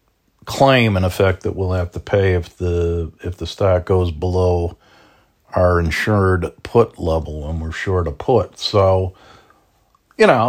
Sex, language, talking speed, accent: male, English, 155 wpm, American